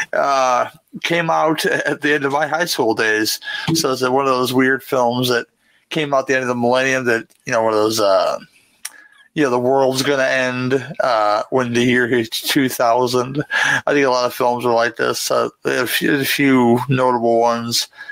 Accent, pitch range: American, 120-145 Hz